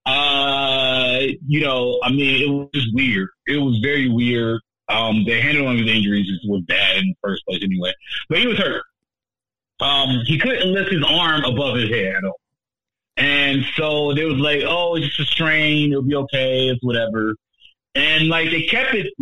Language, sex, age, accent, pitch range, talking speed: English, male, 30-49, American, 115-145 Hz, 195 wpm